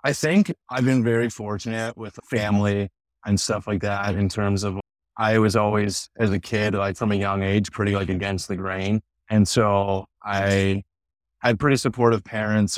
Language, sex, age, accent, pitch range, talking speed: English, male, 30-49, American, 100-115 Hz, 180 wpm